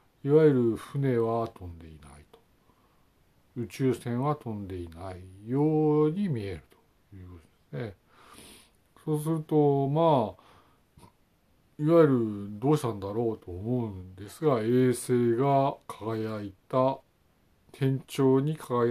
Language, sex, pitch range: Japanese, male, 100-135 Hz